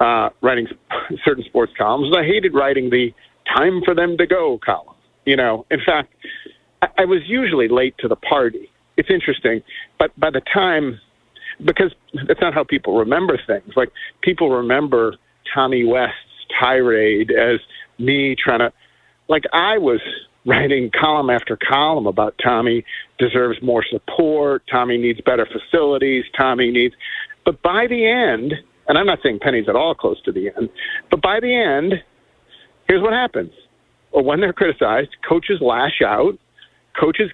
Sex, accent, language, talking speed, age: male, American, English, 155 wpm, 50-69